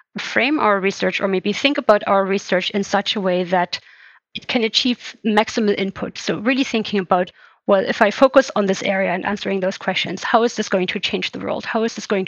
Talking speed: 225 wpm